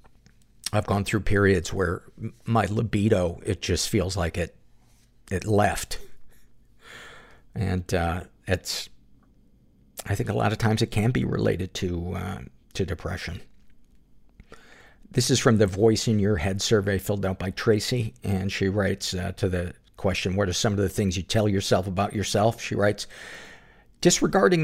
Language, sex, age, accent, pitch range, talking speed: English, male, 50-69, American, 95-115 Hz, 155 wpm